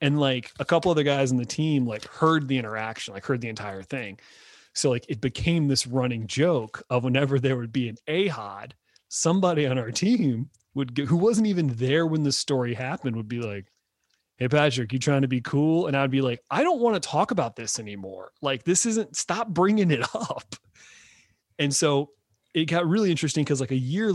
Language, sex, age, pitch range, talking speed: English, male, 30-49, 120-155 Hz, 210 wpm